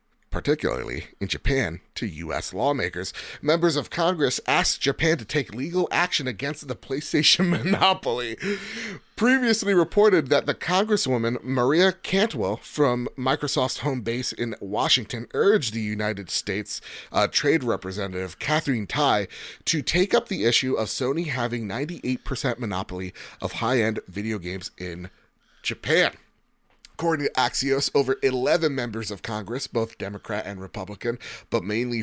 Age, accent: 30-49, American